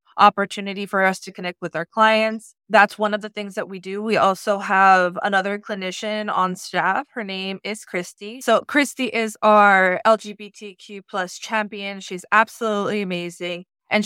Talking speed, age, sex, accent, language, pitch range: 160 wpm, 20-39, female, American, English, 190-220 Hz